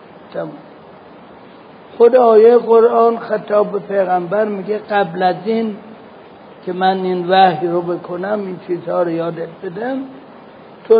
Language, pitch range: Persian, 180-225 Hz